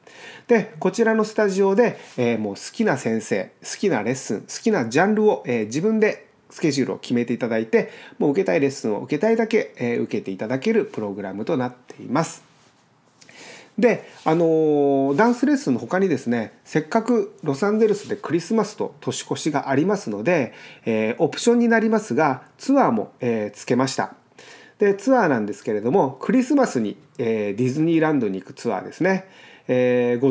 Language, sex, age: Japanese, male, 30-49